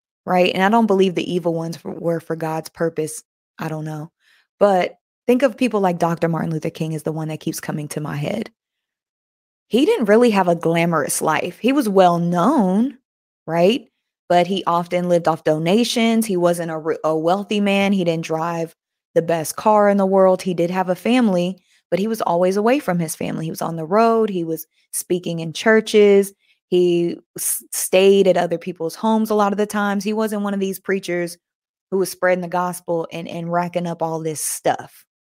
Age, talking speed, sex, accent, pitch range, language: 20-39, 205 wpm, female, American, 170-195 Hz, English